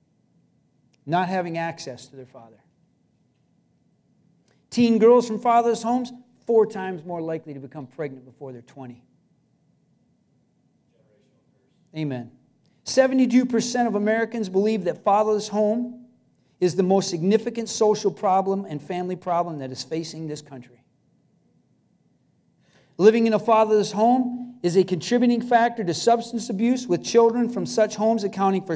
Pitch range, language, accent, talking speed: 155-225 Hz, English, American, 130 wpm